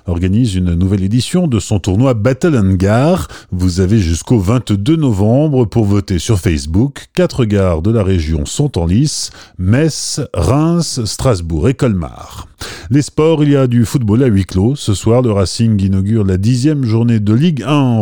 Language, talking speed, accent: French, 175 wpm, French